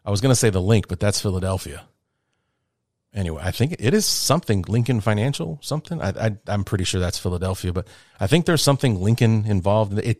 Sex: male